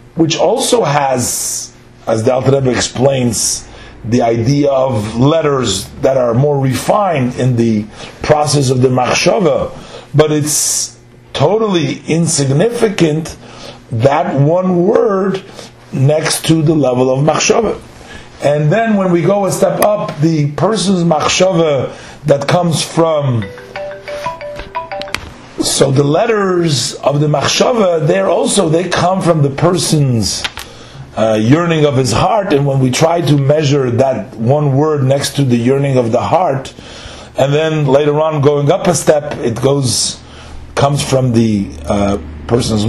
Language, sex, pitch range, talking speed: English, male, 120-160 Hz, 135 wpm